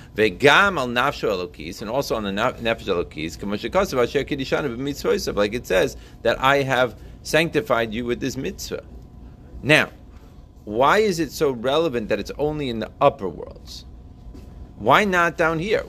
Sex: male